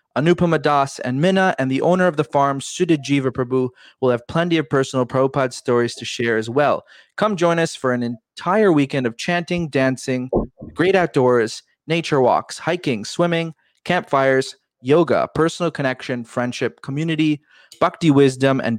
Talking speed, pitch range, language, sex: 155 wpm, 125-160 Hz, English, male